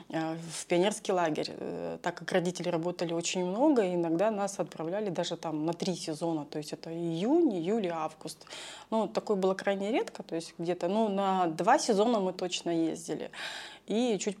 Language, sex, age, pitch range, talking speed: Russian, female, 20-39, 170-205 Hz, 170 wpm